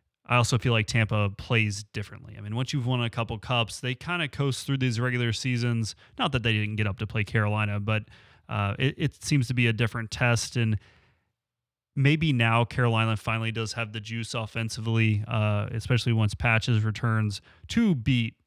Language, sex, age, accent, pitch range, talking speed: English, male, 30-49, American, 105-130 Hz, 190 wpm